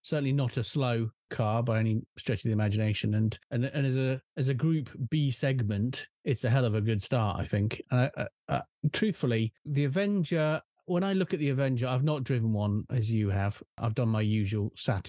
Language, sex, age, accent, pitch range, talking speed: English, male, 30-49, British, 115-150 Hz, 215 wpm